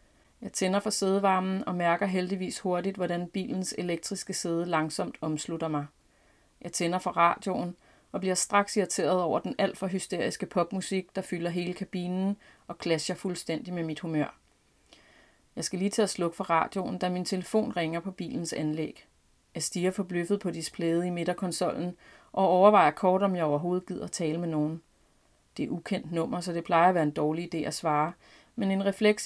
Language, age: Danish, 30-49